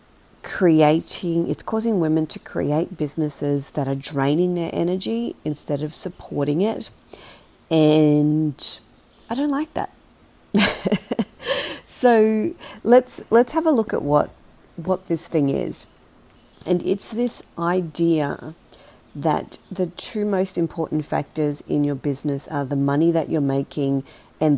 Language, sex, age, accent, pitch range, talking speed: English, female, 40-59, Australian, 135-170 Hz, 130 wpm